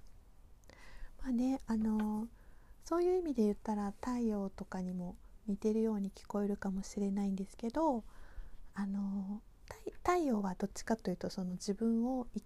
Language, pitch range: Japanese, 195-235 Hz